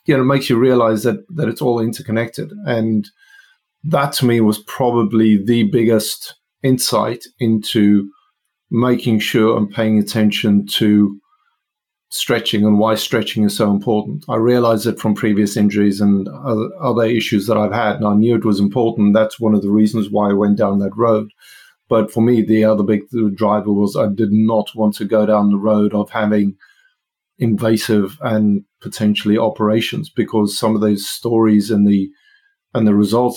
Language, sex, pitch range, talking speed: English, male, 105-120 Hz, 175 wpm